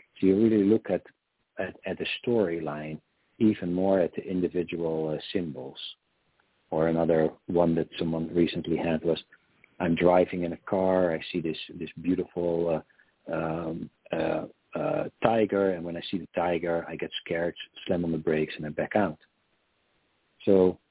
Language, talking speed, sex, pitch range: English, 165 wpm, male, 80-95 Hz